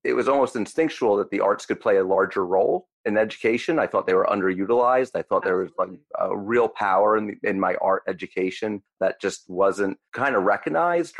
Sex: male